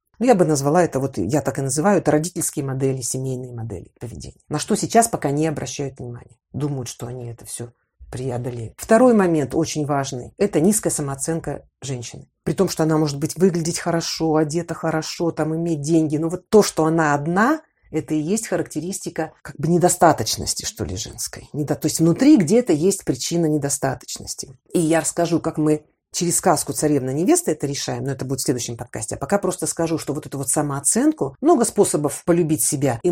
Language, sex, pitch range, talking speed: Russian, female, 140-175 Hz, 185 wpm